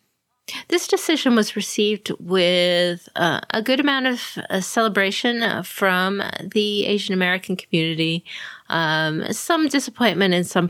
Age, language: 30-49, English